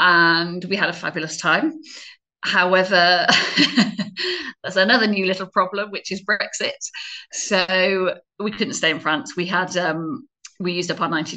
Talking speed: 155 wpm